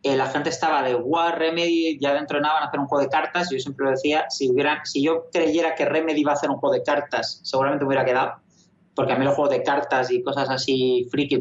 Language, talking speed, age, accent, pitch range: Spanish, 265 wpm, 30-49, Spanish, 135-165 Hz